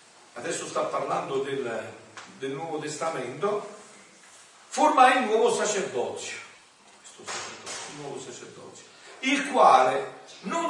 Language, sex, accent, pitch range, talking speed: Italian, male, native, 180-270 Hz, 95 wpm